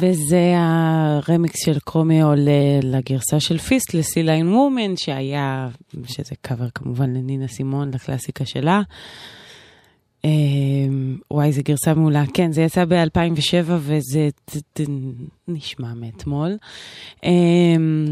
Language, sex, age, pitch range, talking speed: Hebrew, female, 20-39, 135-170 Hz, 110 wpm